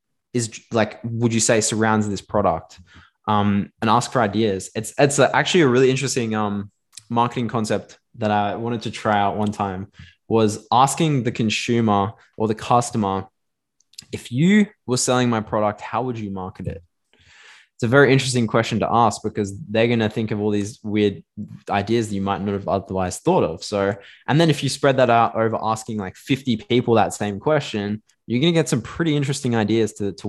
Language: English